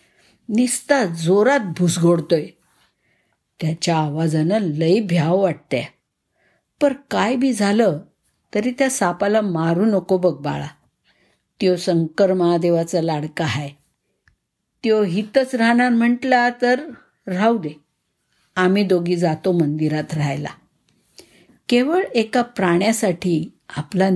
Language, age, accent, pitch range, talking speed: Marathi, 50-69, native, 165-205 Hz, 75 wpm